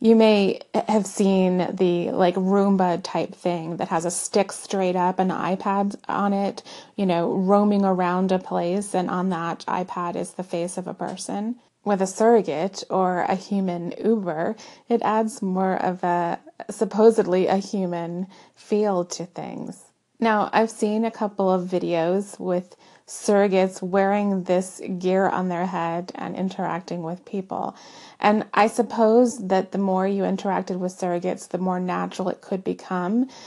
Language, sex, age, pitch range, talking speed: English, female, 30-49, 180-210 Hz, 160 wpm